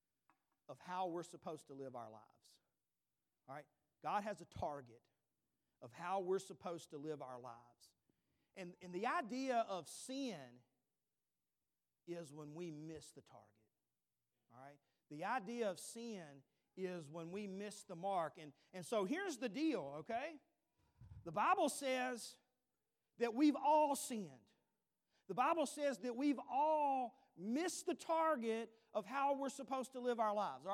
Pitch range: 180-265 Hz